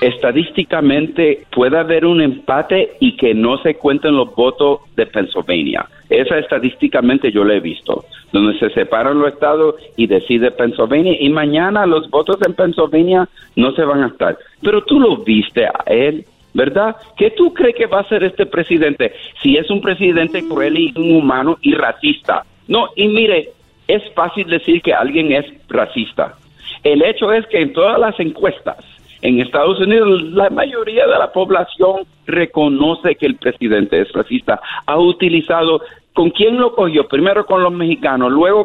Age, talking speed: 50-69, 165 wpm